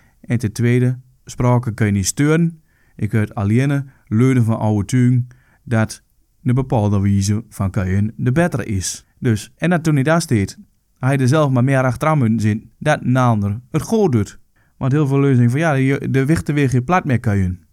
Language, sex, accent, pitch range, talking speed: English, male, Dutch, 110-150 Hz, 195 wpm